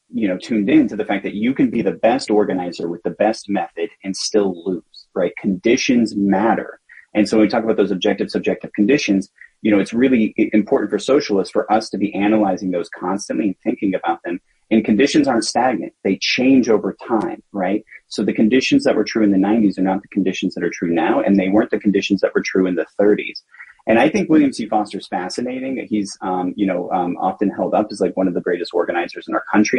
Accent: American